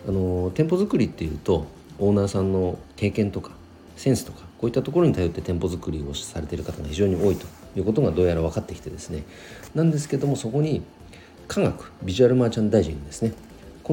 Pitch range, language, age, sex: 80-115 Hz, Japanese, 40-59, male